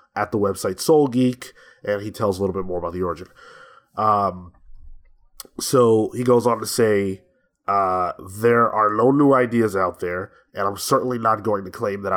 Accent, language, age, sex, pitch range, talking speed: American, English, 20-39, male, 95-120 Hz, 185 wpm